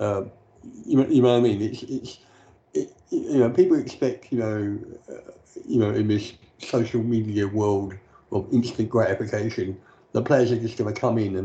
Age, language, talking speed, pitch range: 50-69, English, 185 wpm, 105-125 Hz